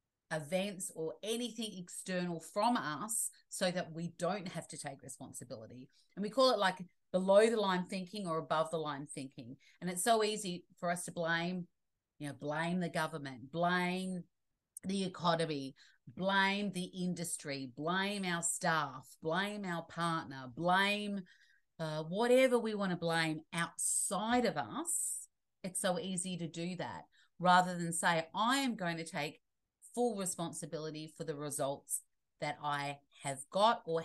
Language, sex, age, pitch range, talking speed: English, female, 40-59, 160-200 Hz, 155 wpm